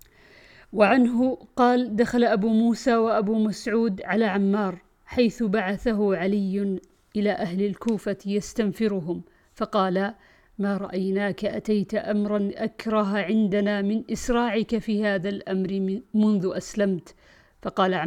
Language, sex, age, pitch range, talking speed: Arabic, female, 50-69, 200-235 Hz, 105 wpm